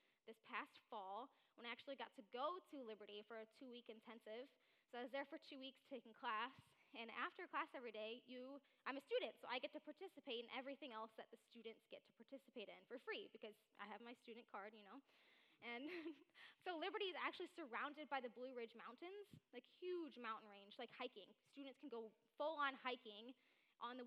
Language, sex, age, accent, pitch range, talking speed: English, female, 10-29, American, 235-360 Hz, 205 wpm